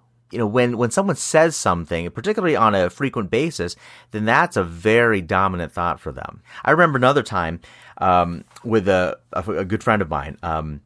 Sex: male